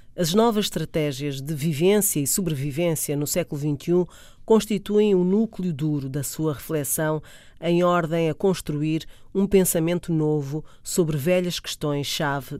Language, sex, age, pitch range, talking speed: Portuguese, female, 40-59, 145-185 Hz, 130 wpm